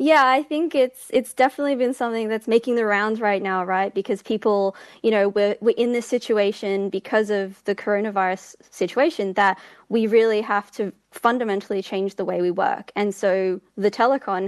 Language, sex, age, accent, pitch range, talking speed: English, female, 20-39, Australian, 190-220 Hz, 180 wpm